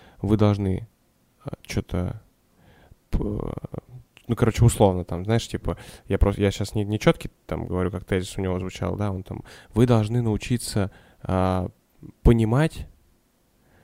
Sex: male